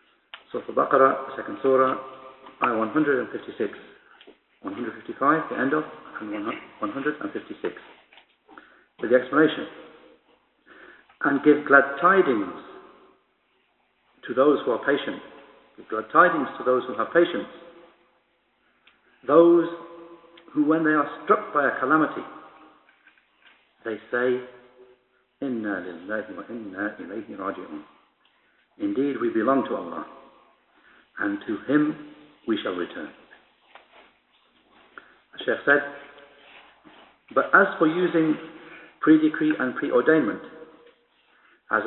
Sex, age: male, 60-79